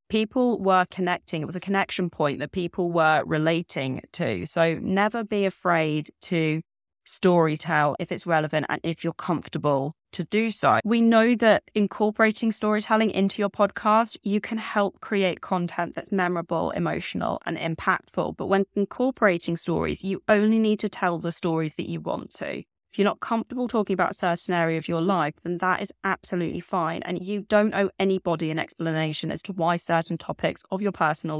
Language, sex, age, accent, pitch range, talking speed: English, female, 20-39, British, 165-200 Hz, 180 wpm